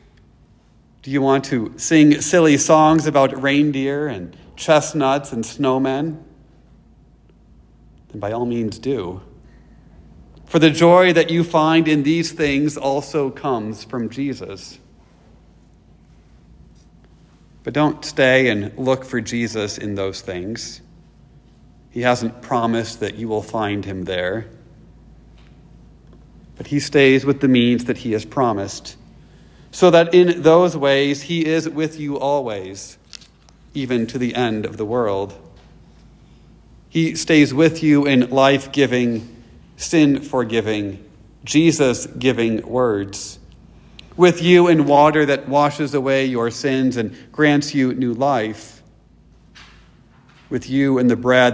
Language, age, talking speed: English, 40-59, 120 wpm